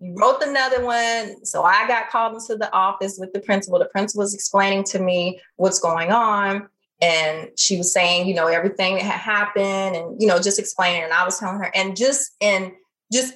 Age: 30-49